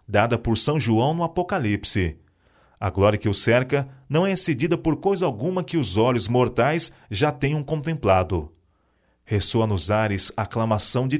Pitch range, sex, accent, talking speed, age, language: 100-145 Hz, male, Brazilian, 155 wpm, 40-59, Portuguese